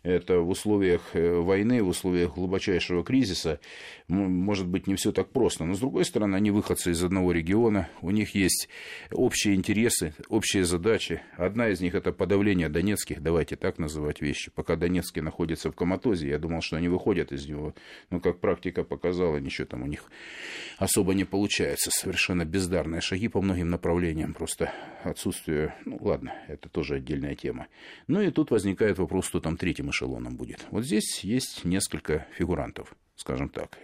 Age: 40-59